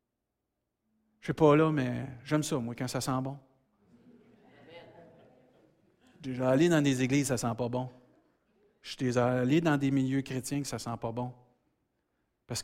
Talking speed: 160 wpm